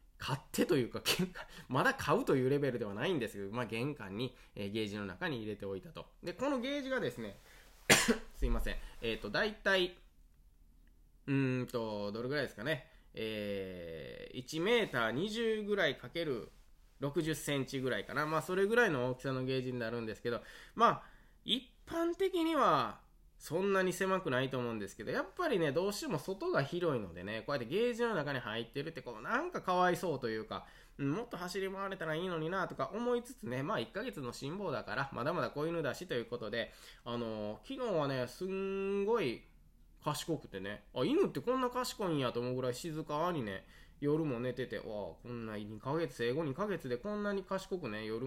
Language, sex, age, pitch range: Japanese, male, 20-39, 115-190 Hz